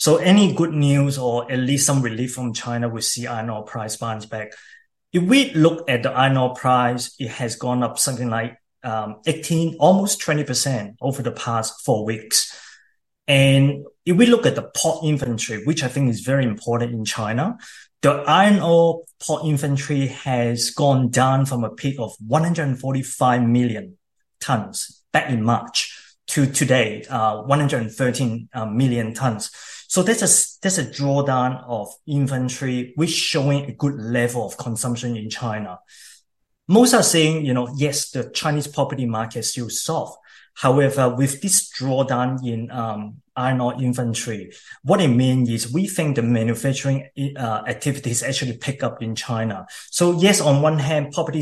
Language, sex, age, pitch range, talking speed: English, male, 20-39, 120-150 Hz, 165 wpm